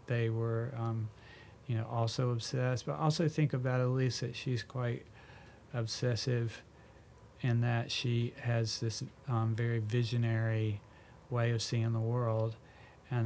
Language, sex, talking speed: English, male, 135 wpm